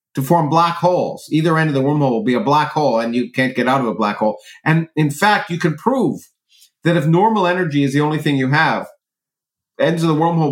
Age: 50-69